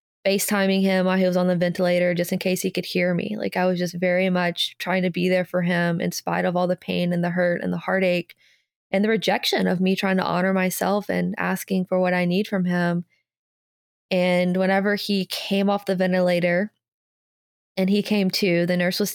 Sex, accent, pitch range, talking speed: female, American, 180-200 Hz, 220 wpm